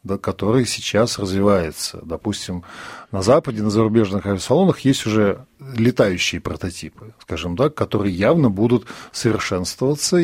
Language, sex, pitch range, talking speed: Russian, male, 100-135 Hz, 115 wpm